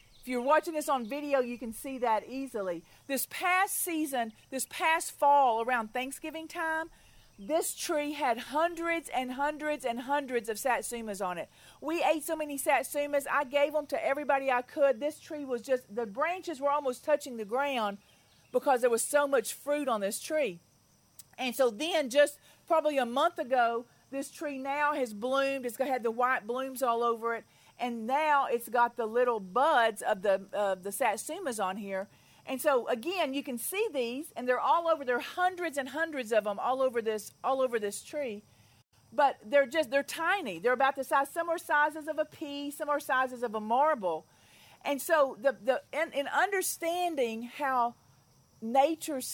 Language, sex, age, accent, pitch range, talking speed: English, female, 40-59, American, 240-300 Hz, 190 wpm